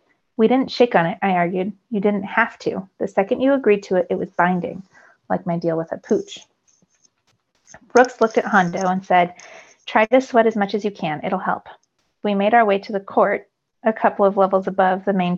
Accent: American